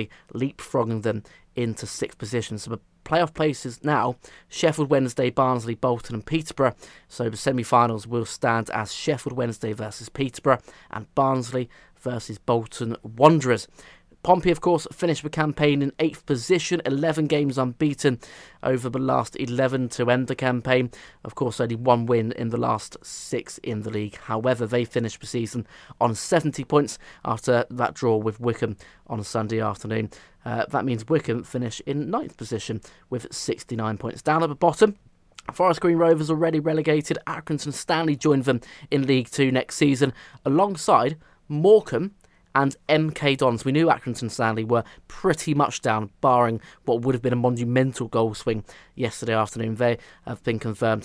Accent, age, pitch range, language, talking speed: British, 20-39, 115-150 Hz, English, 160 wpm